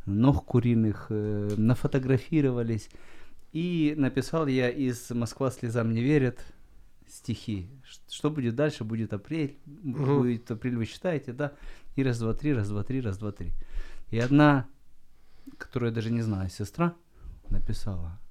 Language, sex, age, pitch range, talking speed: Ukrainian, male, 30-49, 110-150 Hz, 120 wpm